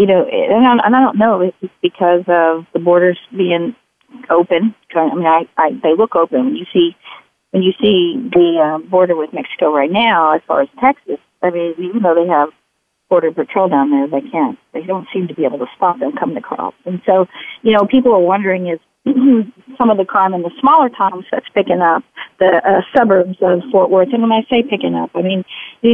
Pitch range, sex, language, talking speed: 175-225 Hz, female, English, 210 wpm